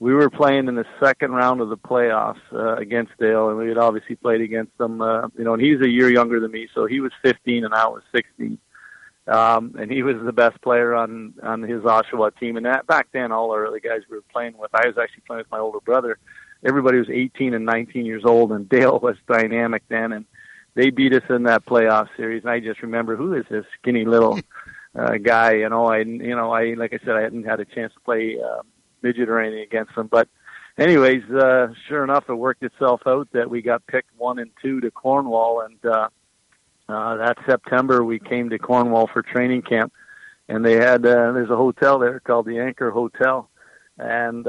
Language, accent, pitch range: English, American, 115-125 Hz